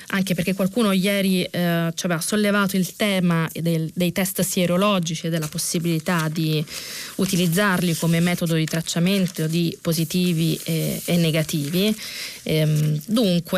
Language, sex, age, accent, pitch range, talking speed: Italian, female, 20-39, native, 165-205 Hz, 130 wpm